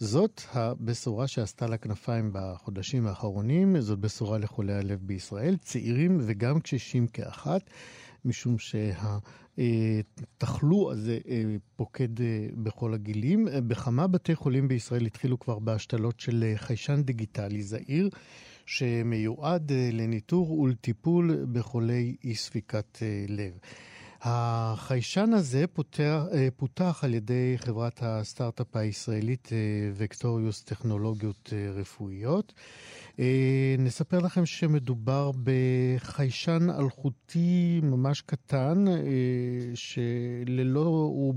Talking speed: 95 wpm